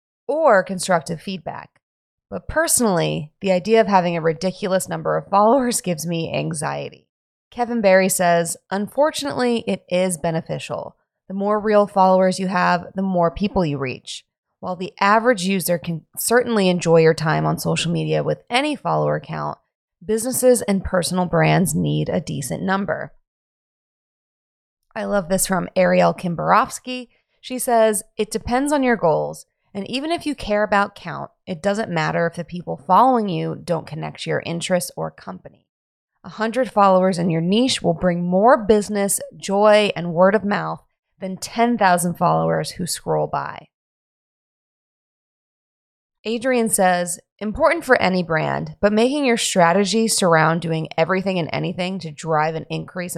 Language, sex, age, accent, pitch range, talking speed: English, female, 20-39, American, 170-215 Hz, 150 wpm